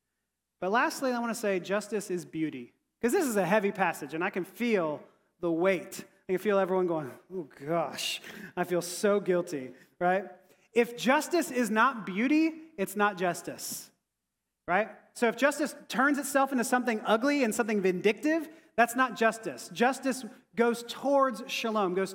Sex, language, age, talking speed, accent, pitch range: male, English, 30-49, 165 wpm, American, 190-250 Hz